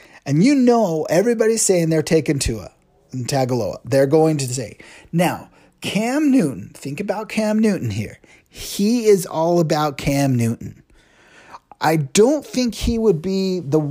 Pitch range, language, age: 140-210 Hz, English, 30-49